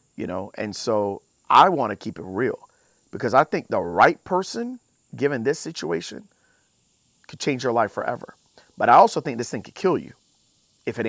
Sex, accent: male, American